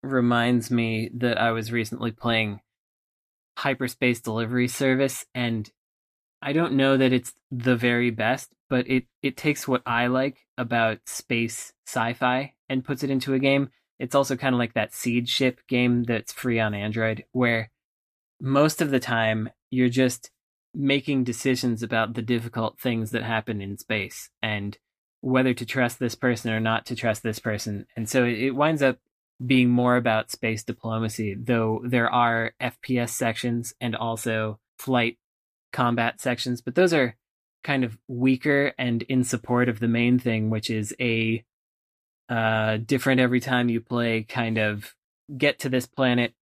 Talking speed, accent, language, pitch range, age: 165 wpm, American, English, 115-130 Hz, 20-39